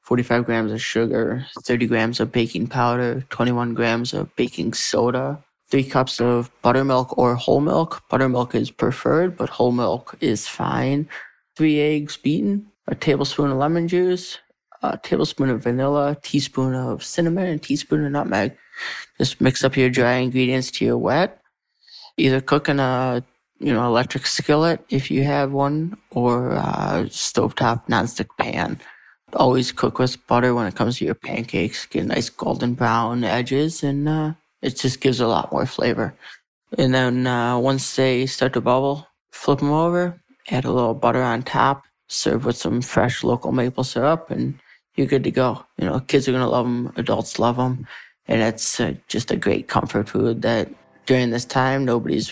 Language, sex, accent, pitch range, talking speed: English, male, American, 120-145 Hz, 175 wpm